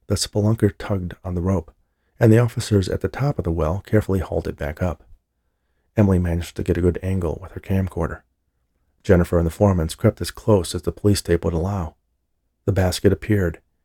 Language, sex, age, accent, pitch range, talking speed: English, male, 40-59, American, 85-105 Hz, 200 wpm